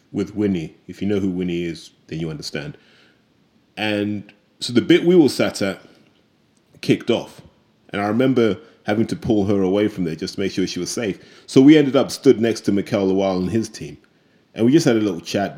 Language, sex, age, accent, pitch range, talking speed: English, male, 30-49, British, 95-120 Hz, 220 wpm